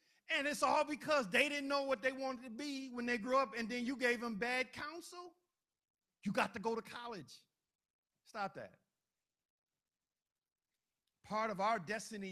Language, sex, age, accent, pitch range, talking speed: English, male, 50-69, American, 195-245 Hz, 170 wpm